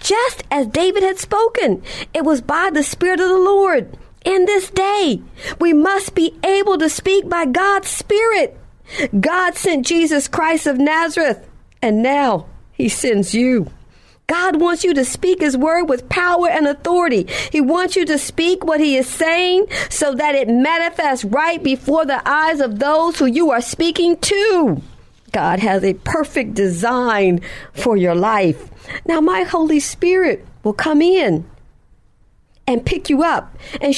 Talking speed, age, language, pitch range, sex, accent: 160 wpm, 40-59, English, 265-360 Hz, female, American